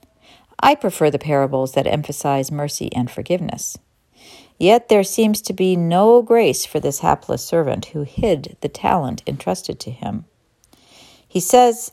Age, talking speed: 50-69, 145 wpm